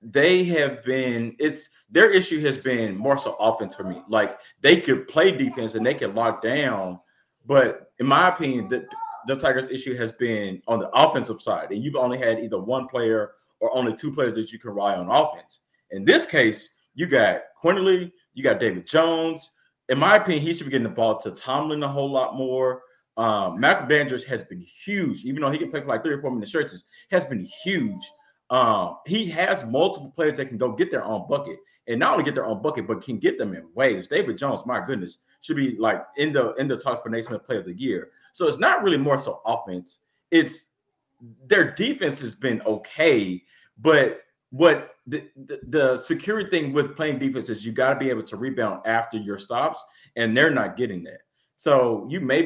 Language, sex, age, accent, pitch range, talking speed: English, male, 30-49, American, 115-165 Hz, 210 wpm